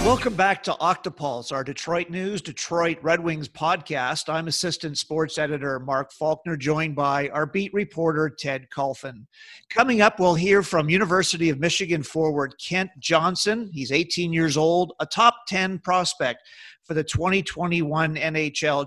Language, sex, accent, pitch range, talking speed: English, male, American, 150-185 Hz, 150 wpm